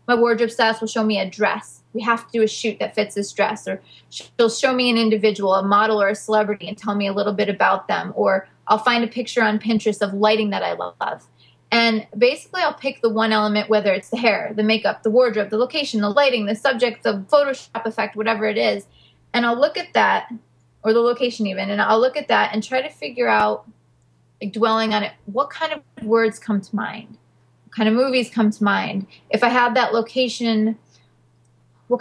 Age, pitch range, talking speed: 20-39, 210-240 Hz, 220 wpm